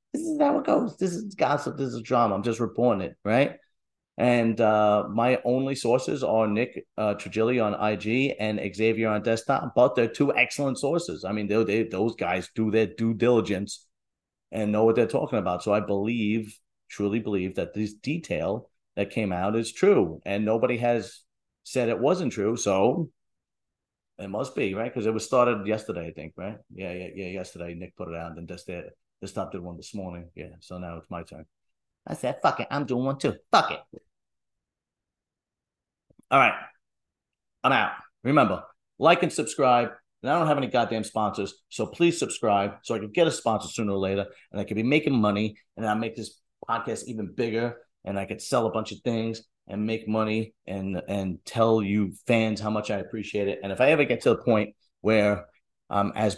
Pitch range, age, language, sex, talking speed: 100-115 Hz, 40-59, English, male, 205 wpm